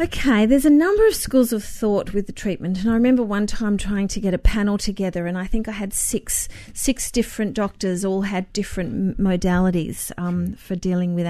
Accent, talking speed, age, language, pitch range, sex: Australian, 205 wpm, 40-59, English, 185-220 Hz, female